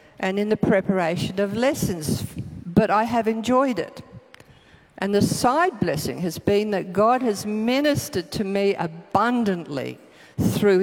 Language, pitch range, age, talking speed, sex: English, 180-225 Hz, 50-69, 140 wpm, female